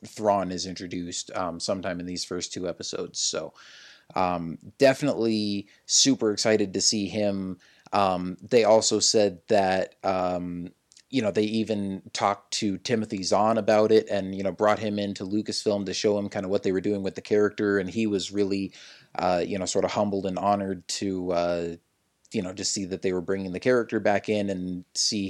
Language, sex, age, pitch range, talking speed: English, male, 30-49, 90-105 Hz, 190 wpm